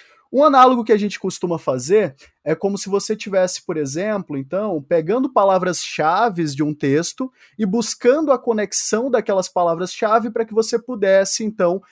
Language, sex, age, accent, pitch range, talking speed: Portuguese, male, 20-39, Brazilian, 165-230 Hz, 155 wpm